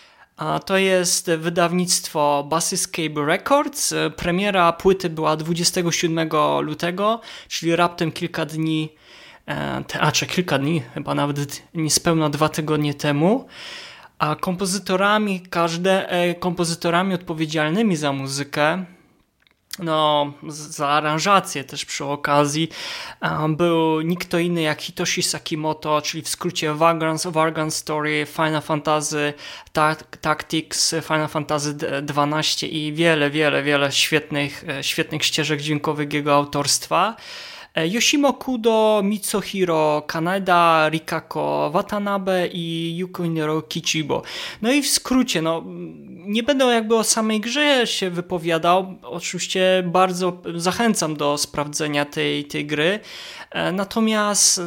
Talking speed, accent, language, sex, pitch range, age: 105 wpm, native, Polish, male, 155-190 Hz, 20-39